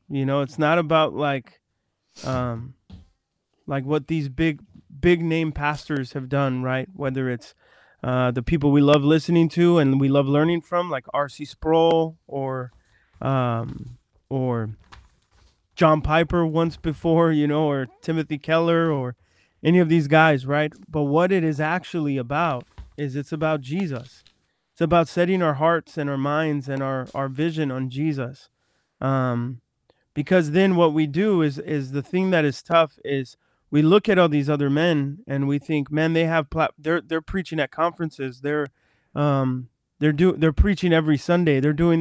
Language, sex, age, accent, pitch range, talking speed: English, male, 20-39, American, 135-165 Hz, 170 wpm